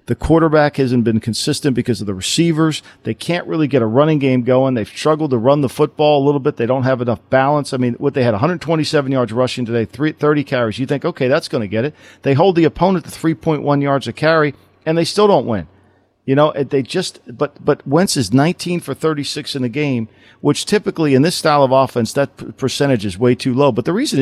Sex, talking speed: male, 240 wpm